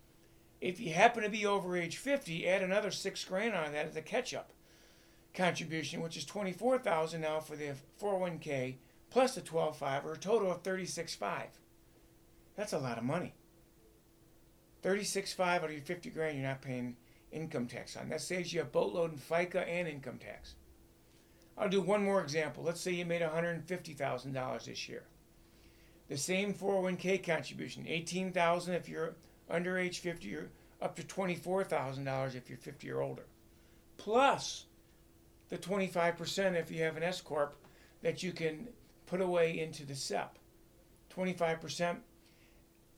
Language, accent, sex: English, American, male